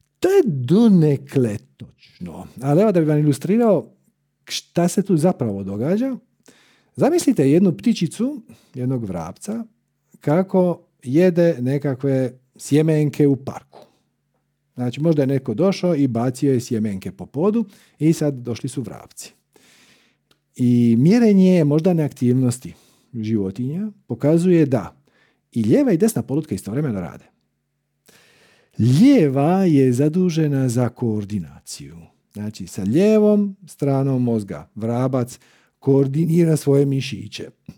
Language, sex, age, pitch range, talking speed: Croatian, male, 50-69, 120-185 Hz, 110 wpm